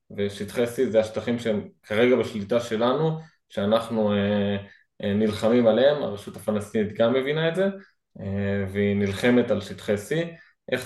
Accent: Spanish